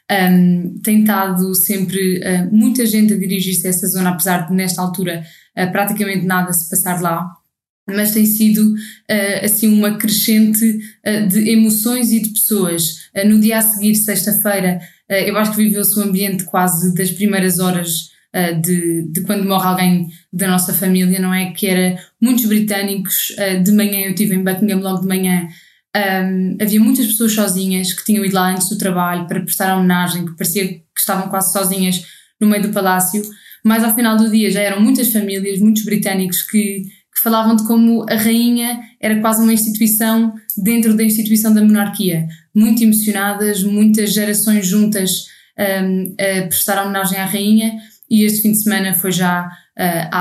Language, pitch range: Portuguese, 185-215 Hz